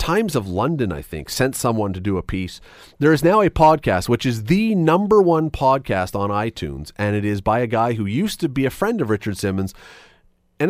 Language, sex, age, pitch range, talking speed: English, male, 30-49, 100-145 Hz, 225 wpm